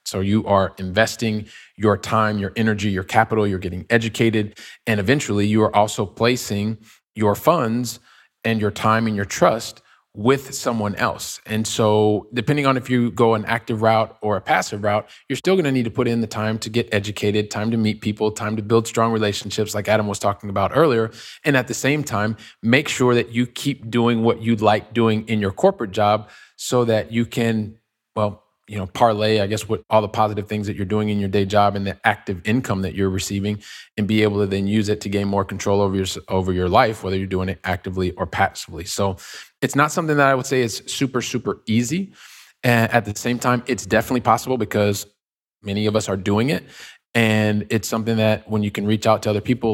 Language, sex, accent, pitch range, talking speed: English, male, American, 105-115 Hz, 220 wpm